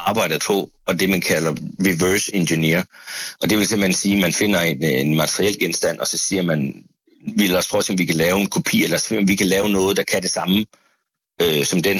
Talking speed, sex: 245 wpm, male